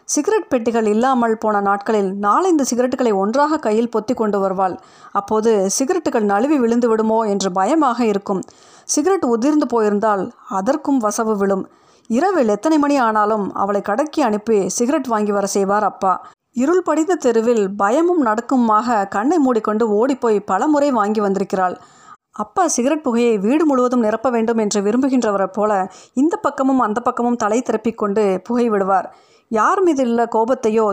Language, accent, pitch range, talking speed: Tamil, native, 205-260 Hz, 130 wpm